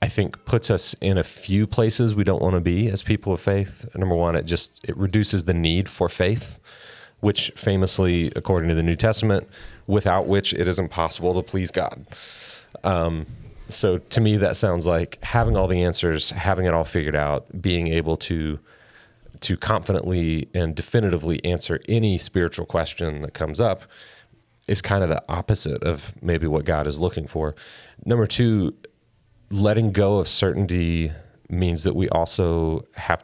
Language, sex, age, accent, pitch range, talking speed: English, male, 30-49, American, 80-100 Hz, 170 wpm